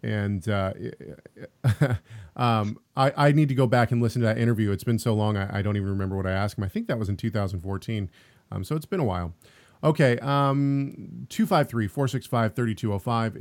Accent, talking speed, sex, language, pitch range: American, 190 wpm, male, English, 110-130 Hz